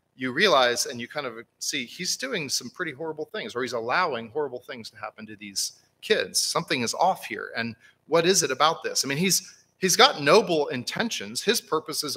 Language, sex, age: English, male, 40-59